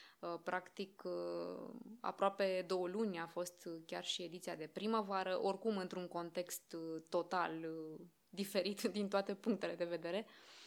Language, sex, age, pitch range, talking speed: Romanian, female, 20-39, 180-230 Hz, 120 wpm